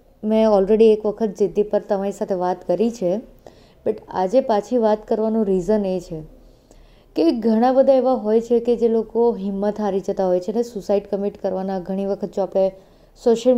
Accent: native